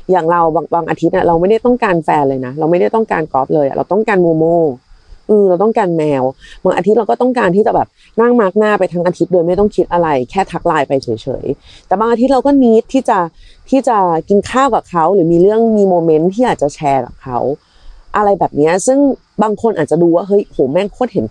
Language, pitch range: Thai, 170-235 Hz